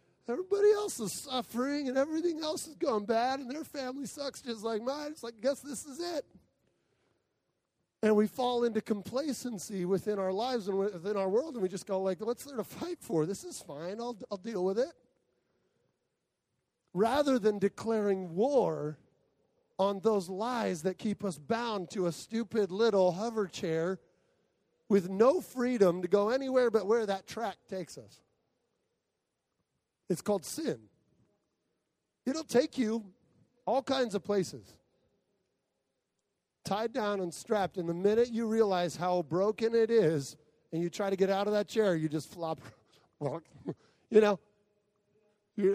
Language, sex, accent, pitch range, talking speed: English, male, American, 180-235 Hz, 155 wpm